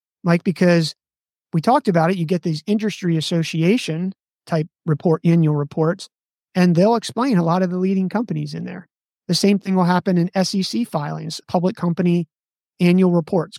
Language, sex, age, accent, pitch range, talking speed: English, male, 30-49, American, 155-180 Hz, 170 wpm